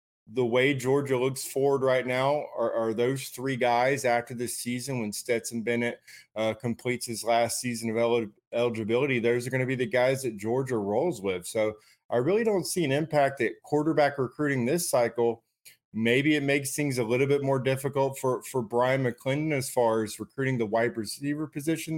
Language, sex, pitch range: English, male, 110-130 Hz